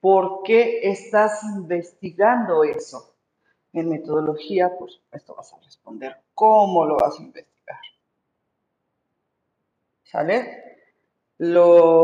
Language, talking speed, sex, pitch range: Spanish, 95 wpm, female, 145-185 Hz